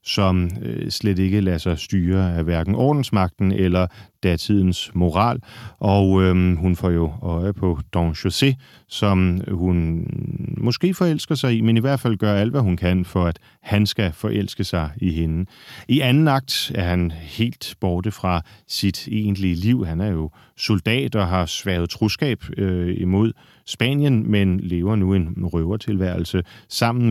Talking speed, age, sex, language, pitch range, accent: 160 wpm, 40-59, male, Danish, 90-110 Hz, native